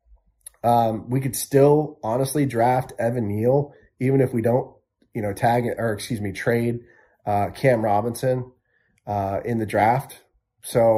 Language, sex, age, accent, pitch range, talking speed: English, male, 30-49, American, 105-120 Hz, 155 wpm